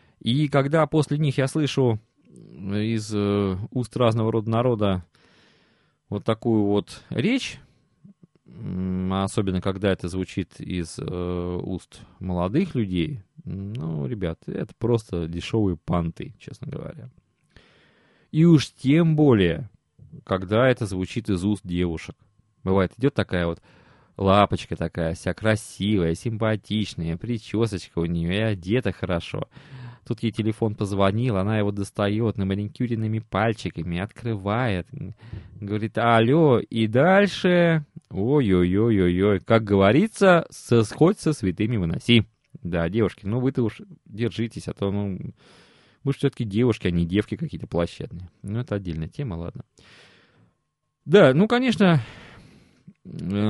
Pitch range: 95-125 Hz